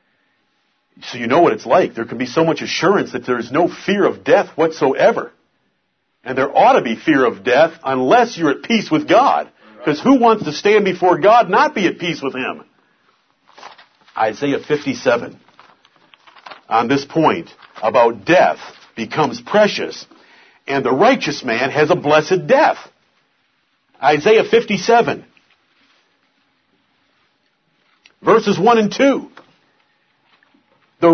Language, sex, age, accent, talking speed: English, male, 50-69, American, 135 wpm